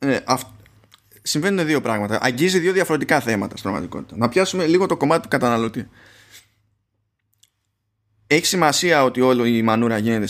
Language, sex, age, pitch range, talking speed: Greek, male, 20-39, 105-150 Hz, 135 wpm